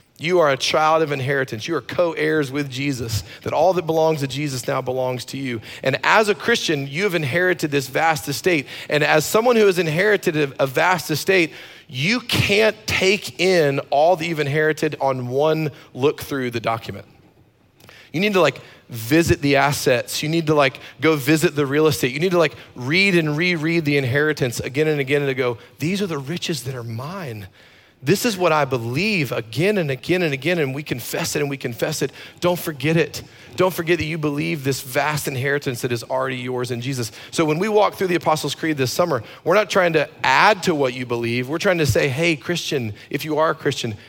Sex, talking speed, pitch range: male, 215 wpm, 130-165 Hz